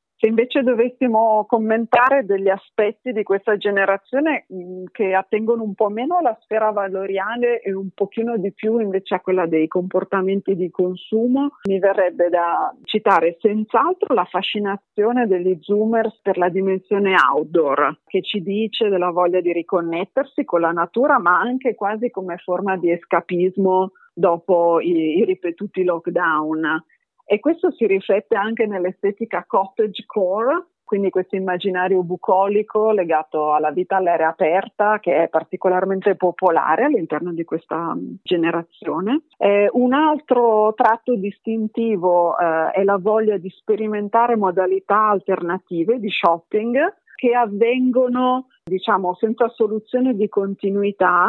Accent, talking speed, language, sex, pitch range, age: native, 130 wpm, Italian, female, 185-225 Hz, 40-59